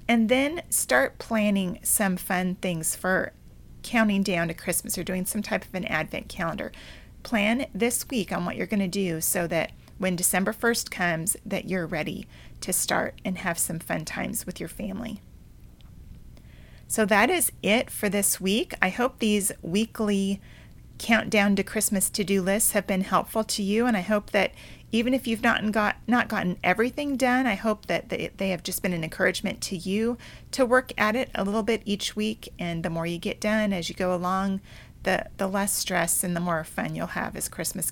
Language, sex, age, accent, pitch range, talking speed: English, female, 40-59, American, 180-220 Hz, 195 wpm